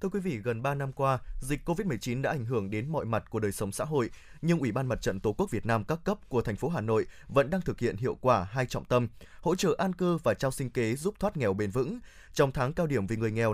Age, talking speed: 20-39, 290 wpm